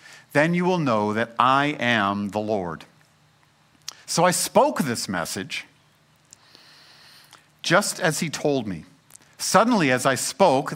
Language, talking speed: English, 130 wpm